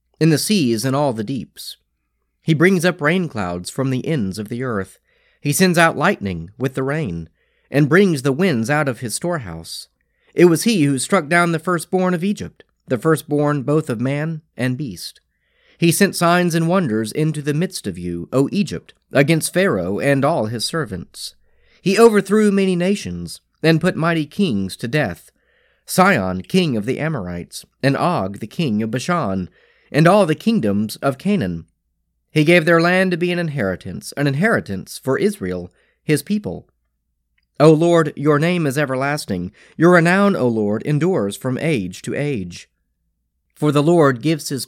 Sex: male